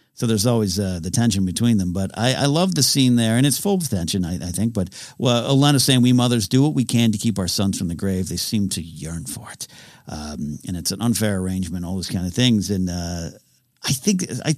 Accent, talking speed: American, 255 wpm